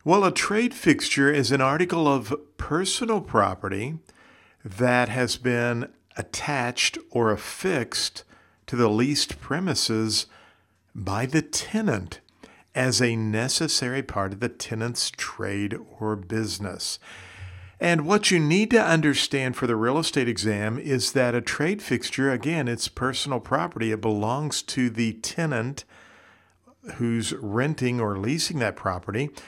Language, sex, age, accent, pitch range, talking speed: English, male, 50-69, American, 110-150 Hz, 130 wpm